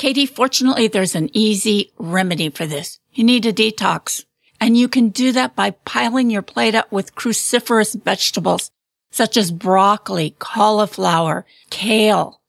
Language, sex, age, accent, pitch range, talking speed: English, female, 50-69, American, 210-250 Hz, 145 wpm